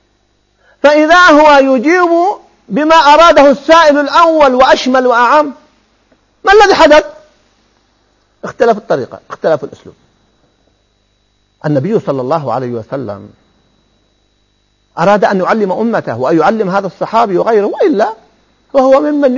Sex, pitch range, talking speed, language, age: male, 185-265 Hz, 100 wpm, Arabic, 50-69